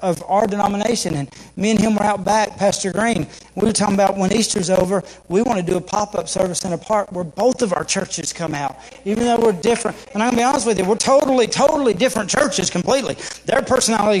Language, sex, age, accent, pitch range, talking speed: English, male, 40-59, American, 185-235 Hz, 235 wpm